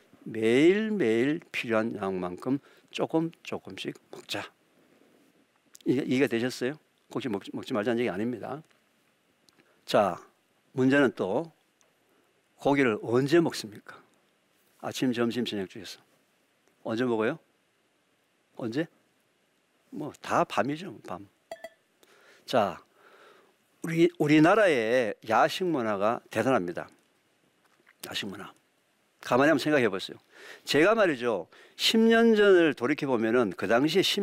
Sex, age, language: male, 50-69, Korean